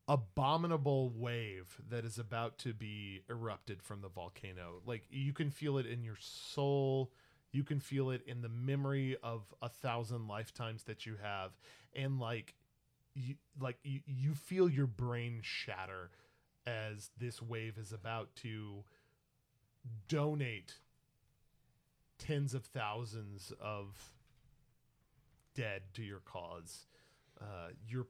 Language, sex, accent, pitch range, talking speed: English, male, American, 110-135 Hz, 125 wpm